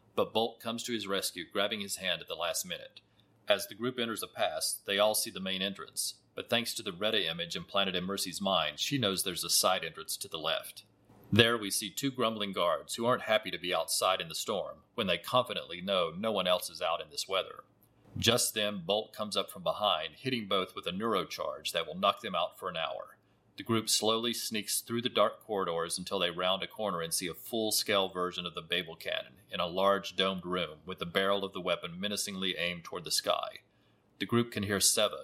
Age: 40-59